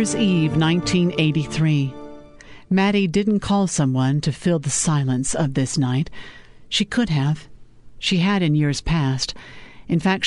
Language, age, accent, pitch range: English, 50-69, American, 145-180 Hz